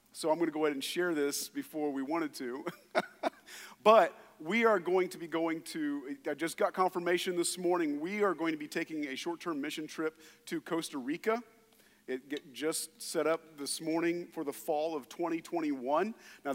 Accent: American